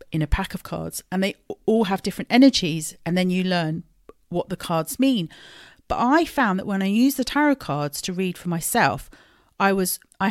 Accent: British